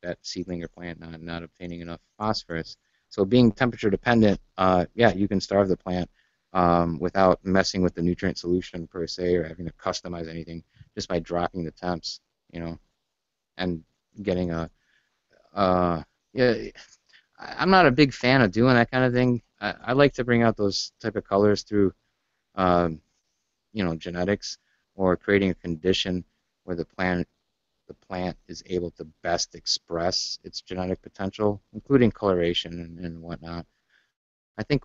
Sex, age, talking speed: male, 30-49, 165 wpm